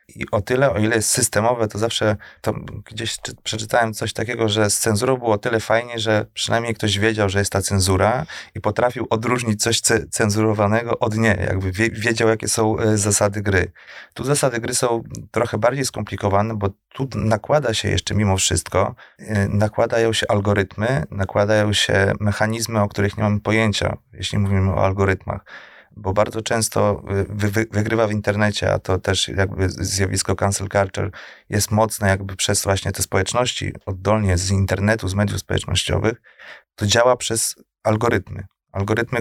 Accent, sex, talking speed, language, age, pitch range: native, male, 160 wpm, Polish, 30-49, 95-110 Hz